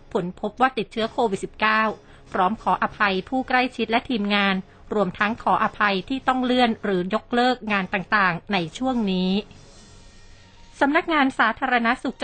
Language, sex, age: Thai, female, 30-49